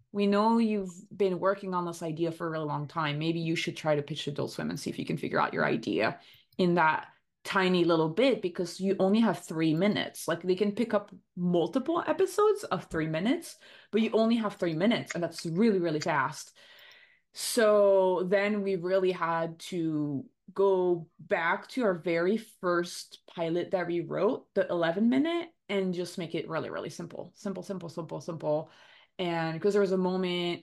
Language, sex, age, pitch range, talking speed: English, female, 20-39, 165-215 Hz, 190 wpm